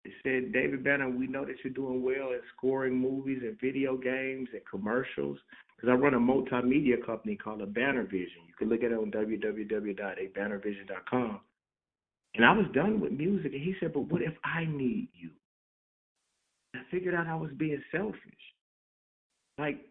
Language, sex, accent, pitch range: English, male, American, 130-180 Hz